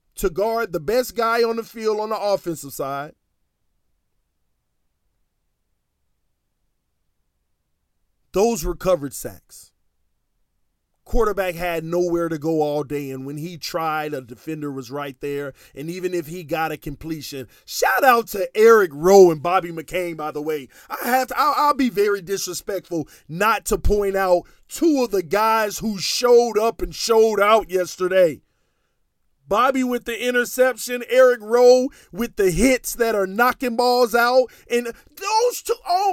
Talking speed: 150 wpm